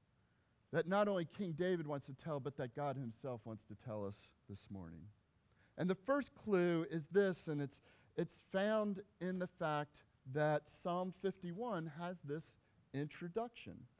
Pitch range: 145-200 Hz